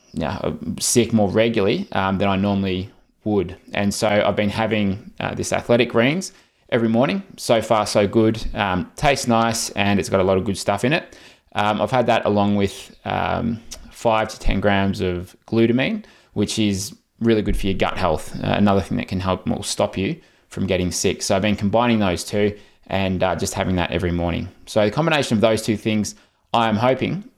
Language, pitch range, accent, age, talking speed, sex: English, 95-115 Hz, Australian, 20-39, 200 wpm, male